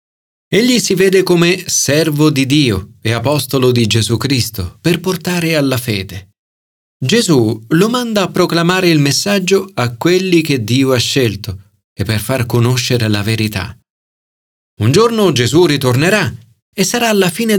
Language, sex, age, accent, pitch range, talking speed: Italian, male, 40-59, native, 110-180 Hz, 145 wpm